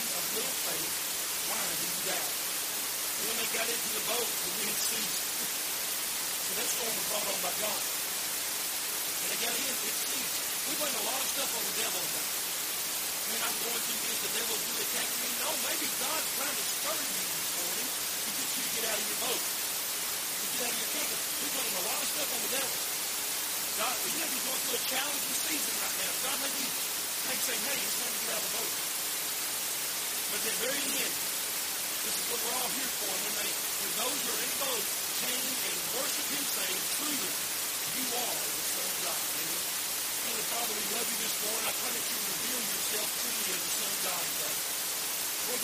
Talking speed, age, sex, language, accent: 215 wpm, 30-49, female, English, American